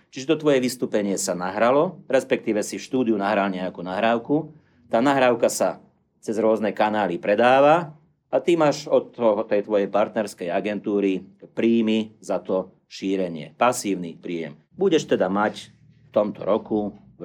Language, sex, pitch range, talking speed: Slovak, male, 95-125 Hz, 140 wpm